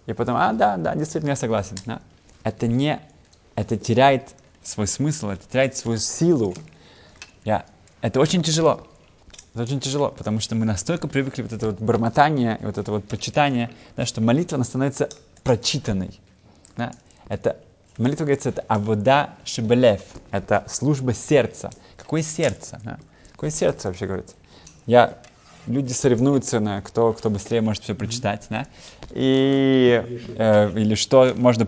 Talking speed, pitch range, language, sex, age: 140 wpm, 110-140 Hz, Russian, male, 20-39